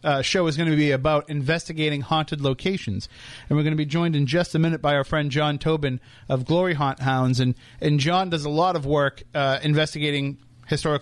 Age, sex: 30-49, male